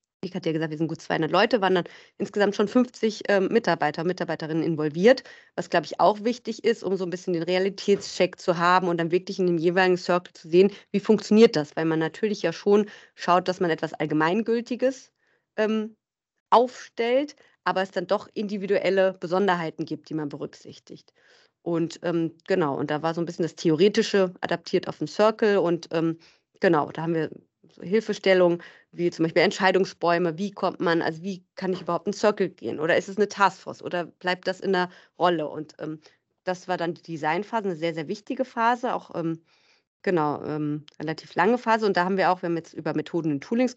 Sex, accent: female, German